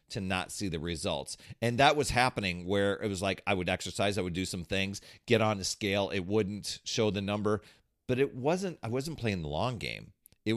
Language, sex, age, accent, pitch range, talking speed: English, male, 40-59, American, 95-120 Hz, 225 wpm